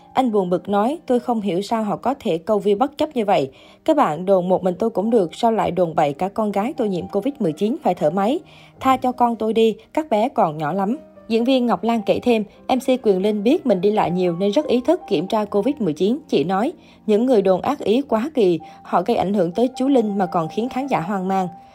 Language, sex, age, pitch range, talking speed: Vietnamese, female, 20-39, 190-240 Hz, 255 wpm